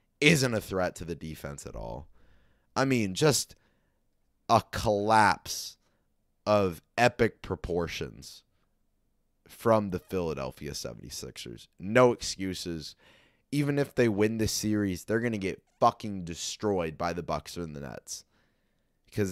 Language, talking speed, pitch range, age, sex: English, 125 wpm, 90-120 Hz, 20-39, male